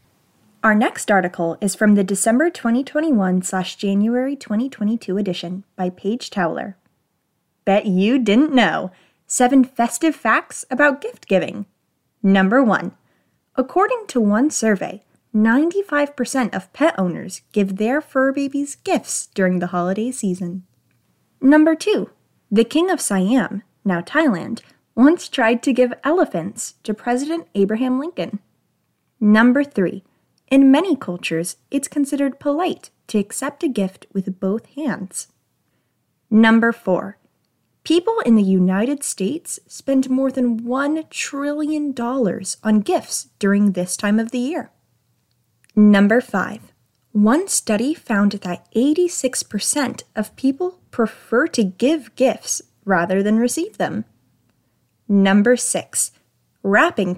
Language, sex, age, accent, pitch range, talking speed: English, female, 10-29, American, 195-275 Hz, 120 wpm